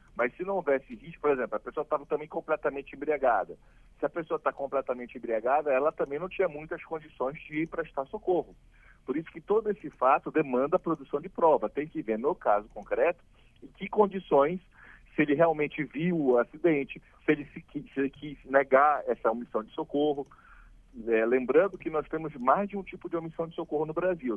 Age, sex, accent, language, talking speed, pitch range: 40-59, male, Brazilian, Portuguese, 195 wpm, 130-175 Hz